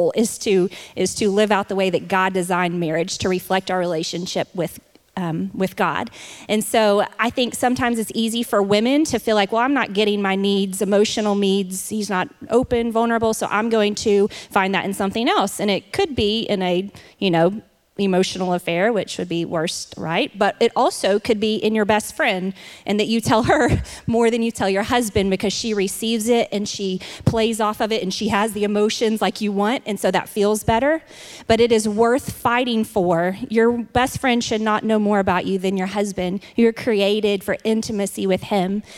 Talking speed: 210 wpm